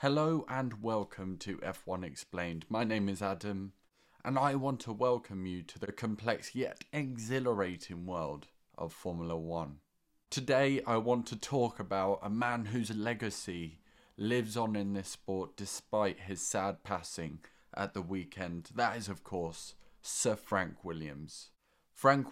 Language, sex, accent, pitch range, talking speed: English, male, British, 95-120 Hz, 150 wpm